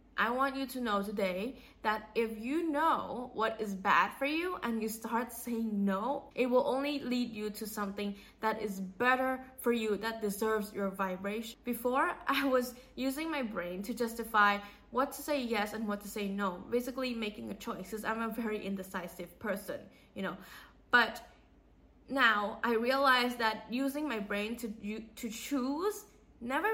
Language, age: Thai, 10-29